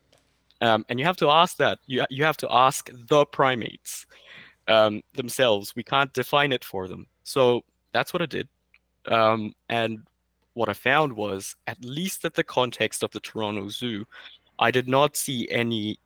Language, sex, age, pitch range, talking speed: English, male, 20-39, 105-135 Hz, 175 wpm